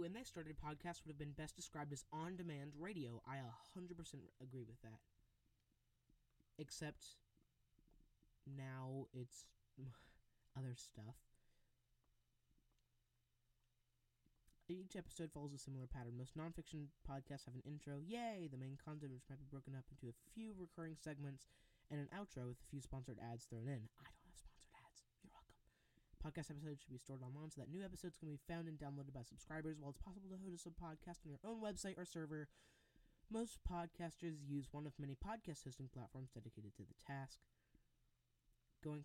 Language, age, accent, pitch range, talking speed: English, 20-39, American, 125-160 Hz, 160 wpm